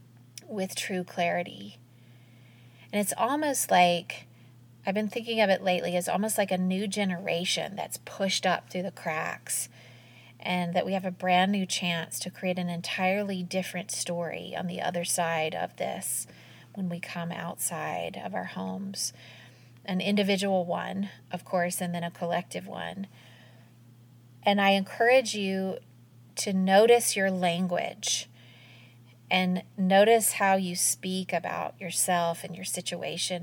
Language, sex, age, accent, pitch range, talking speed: English, female, 30-49, American, 120-190 Hz, 145 wpm